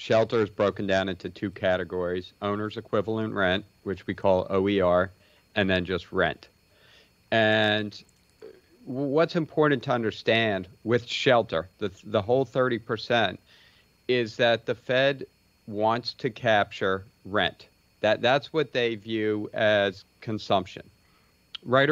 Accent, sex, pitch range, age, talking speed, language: American, male, 100-125 Hz, 40-59, 125 wpm, English